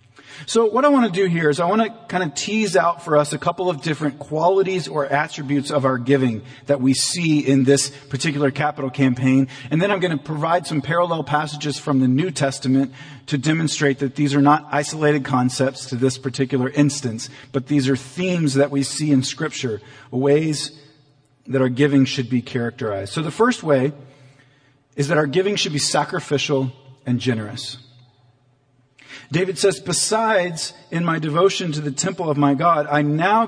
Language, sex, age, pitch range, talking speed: English, male, 40-59, 135-165 Hz, 185 wpm